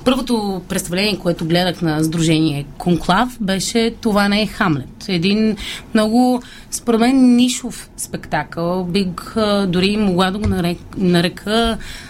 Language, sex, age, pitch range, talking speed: Bulgarian, female, 30-49, 175-230 Hz, 115 wpm